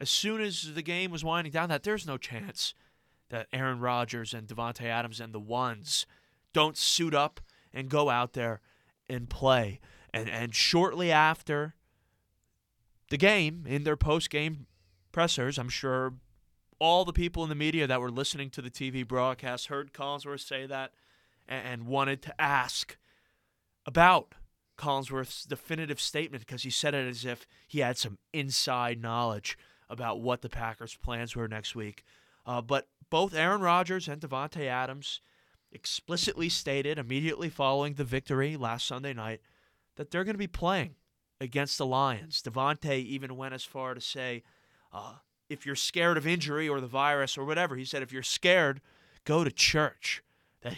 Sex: male